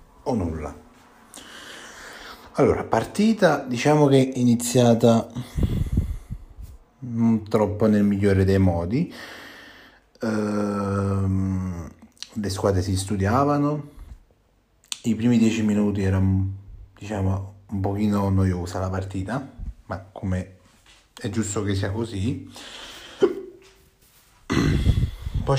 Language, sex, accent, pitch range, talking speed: Italian, male, native, 95-115 Hz, 85 wpm